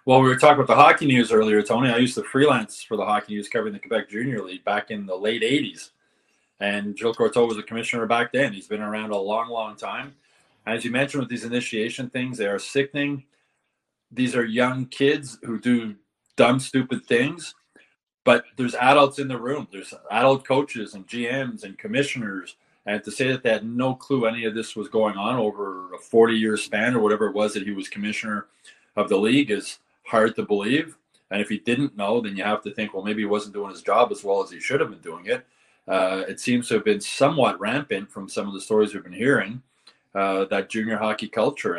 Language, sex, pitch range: English, male, 105-135 Hz